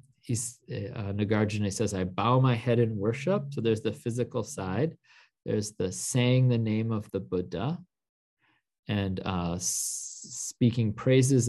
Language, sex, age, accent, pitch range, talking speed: English, male, 40-59, American, 105-130 Hz, 135 wpm